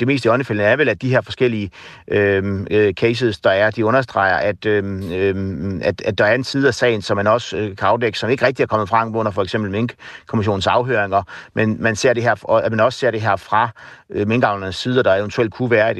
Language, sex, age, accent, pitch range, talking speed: Danish, male, 60-79, native, 100-120 Hz, 220 wpm